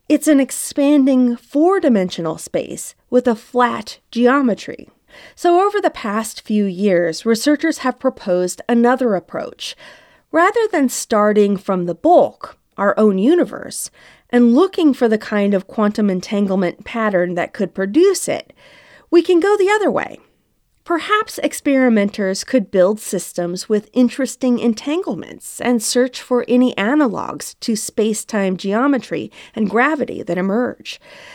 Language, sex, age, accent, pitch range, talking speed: English, female, 40-59, American, 190-270 Hz, 130 wpm